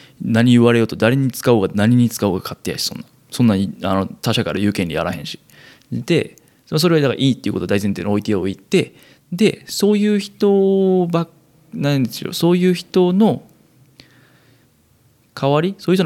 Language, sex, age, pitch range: Japanese, male, 20-39, 105-170 Hz